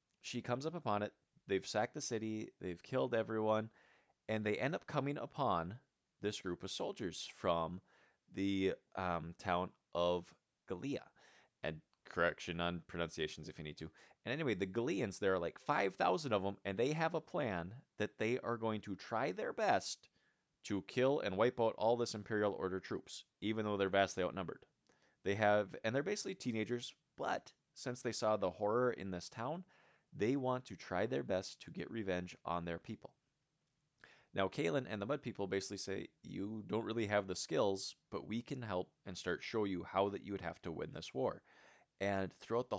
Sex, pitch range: male, 95-120 Hz